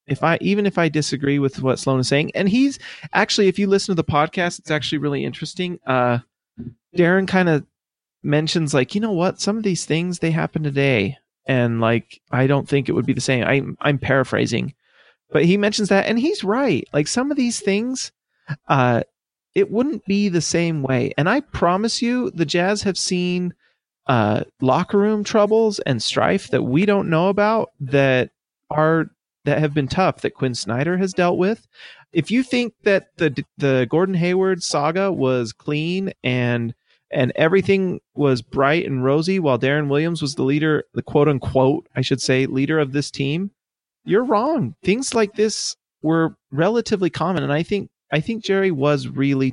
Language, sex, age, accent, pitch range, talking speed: English, male, 30-49, American, 135-190 Hz, 185 wpm